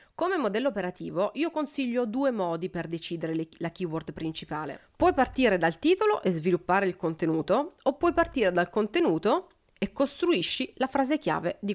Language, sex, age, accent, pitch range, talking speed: Italian, female, 30-49, native, 170-245 Hz, 160 wpm